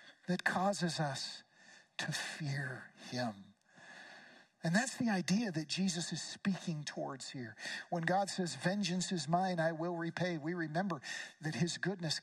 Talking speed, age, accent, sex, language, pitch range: 145 wpm, 50-69, American, male, English, 170-210 Hz